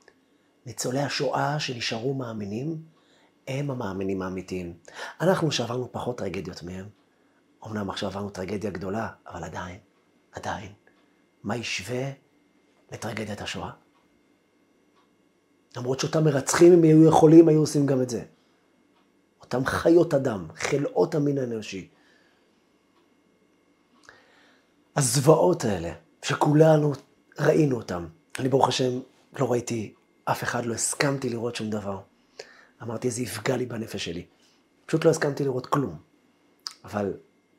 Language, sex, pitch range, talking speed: Hebrew, male, 110-150 Hz, 110 wpm